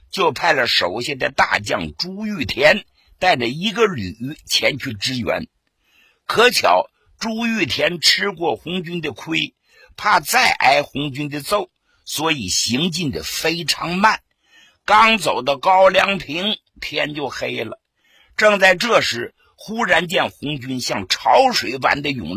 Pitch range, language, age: 145-205 Hz, Japanese, 50-69